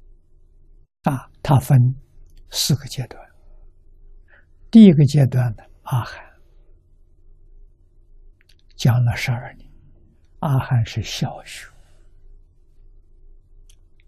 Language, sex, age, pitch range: Chinese, male, 60-79, 80-120 Hz